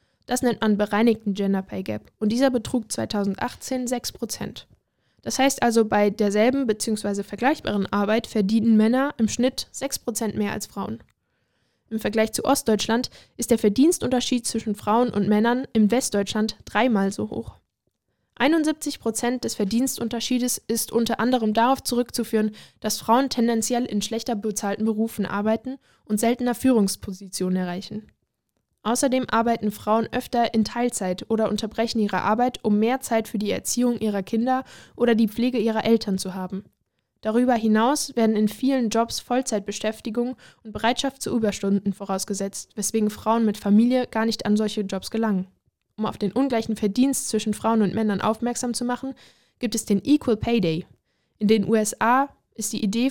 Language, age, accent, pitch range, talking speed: German, 10-29, German, 210-245 Hz, 155 wpm